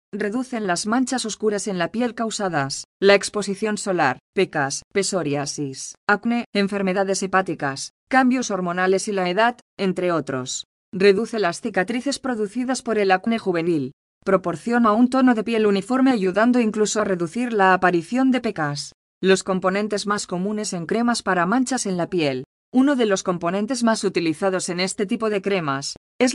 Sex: female